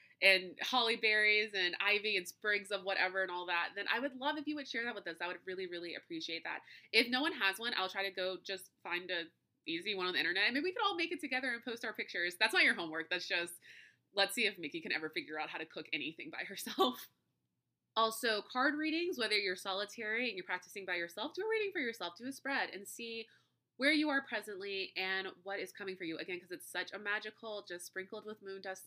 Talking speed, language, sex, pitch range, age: 250 wpm, English, female, 180-250 Hz, 20-39